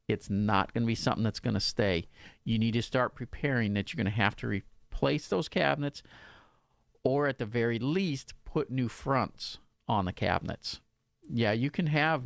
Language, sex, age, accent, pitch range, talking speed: English, male, 50-69, American, 105-140 Hz, 190 wpm